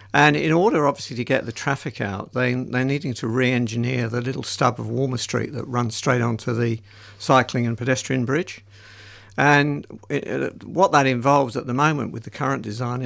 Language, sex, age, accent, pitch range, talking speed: English, male, 60-79, British, 110-130 Hz, 180 wpm